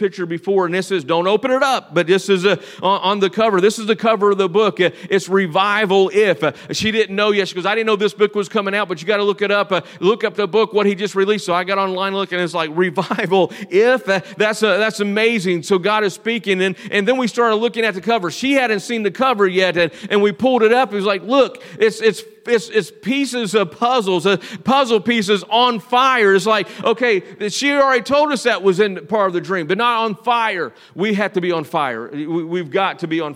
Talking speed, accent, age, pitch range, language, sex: 250 wpm, American, 40-59, 185-215 Hz, English, male